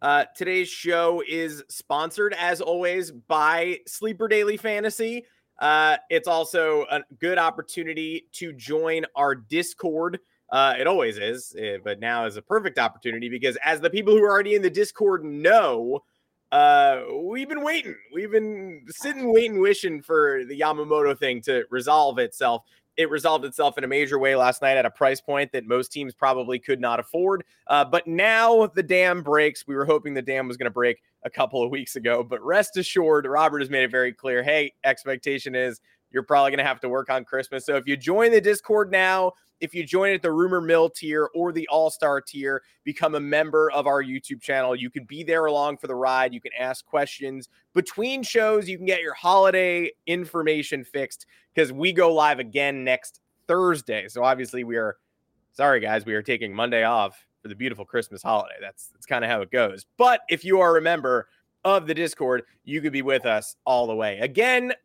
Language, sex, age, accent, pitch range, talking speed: English, male, 30-49, American, 135-190 Hz, 195 wpm